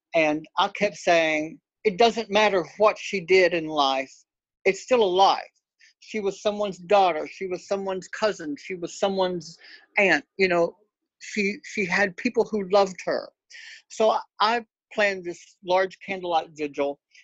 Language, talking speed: English, 155 wpm